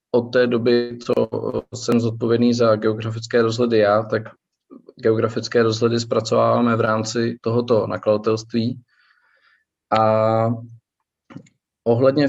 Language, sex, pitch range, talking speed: Czech, male, 110-125 Hz, 100 wpm